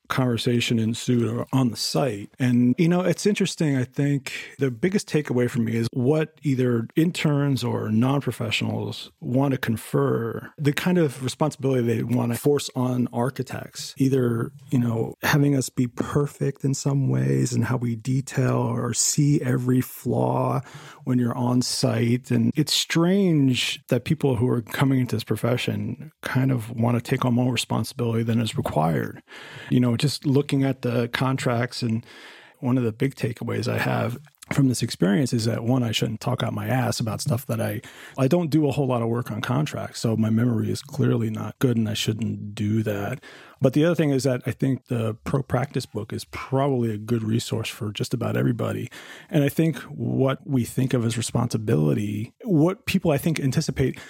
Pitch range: 115-140 Hz